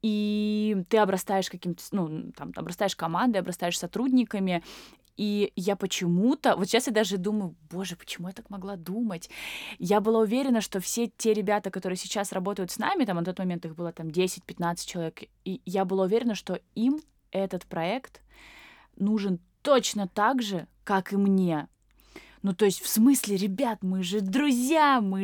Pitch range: 180-220 Hz